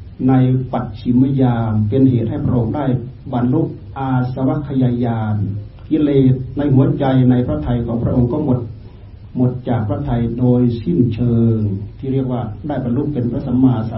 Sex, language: male, Thai